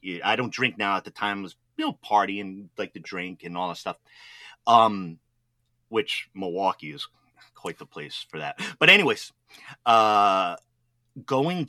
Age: 30-49